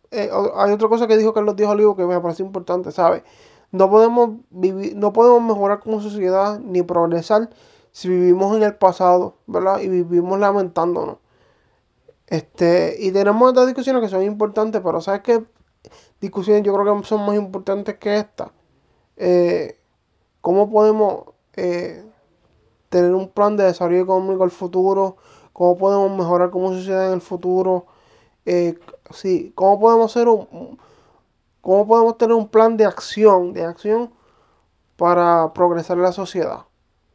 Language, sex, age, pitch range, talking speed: English, male, 20-39, 180-215 Hz, 150 wpm